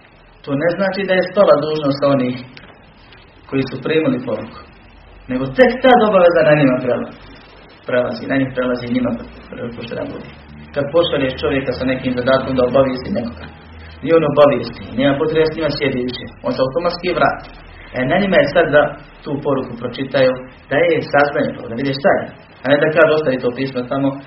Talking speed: 175 wpm